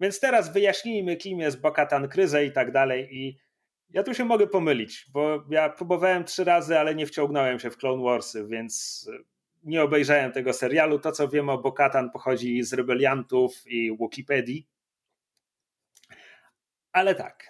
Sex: male